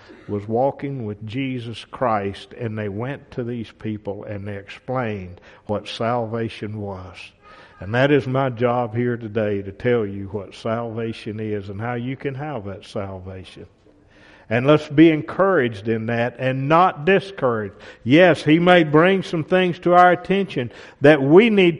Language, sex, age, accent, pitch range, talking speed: English, male, 50-69, American, 110-150 Hz, 160 wpm